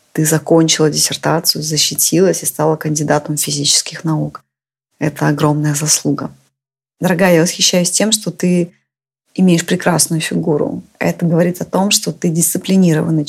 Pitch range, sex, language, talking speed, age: 150-175 Hz, female, Russian, 125 wpm, 20-39